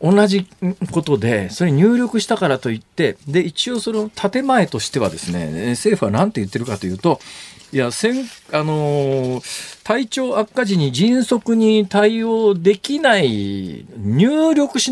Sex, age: male, 40-59